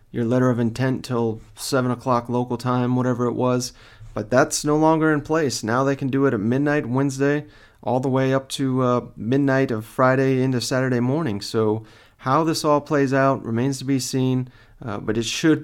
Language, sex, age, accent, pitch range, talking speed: English, male, 30-49, American, 115-135 Hz, 200 wpm